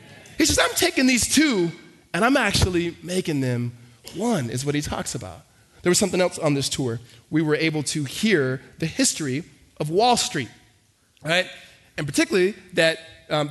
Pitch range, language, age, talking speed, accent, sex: 135-195 Hz, English, 20-39, 175 wpm, American, male